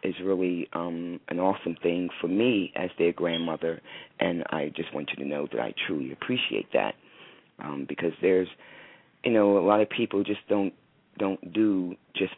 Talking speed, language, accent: 180 wpm, English, American